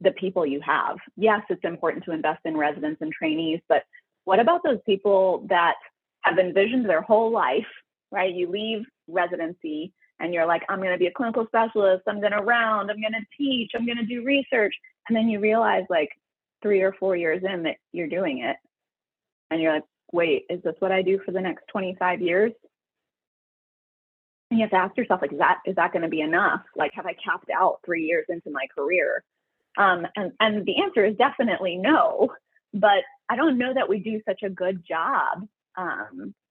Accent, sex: American, female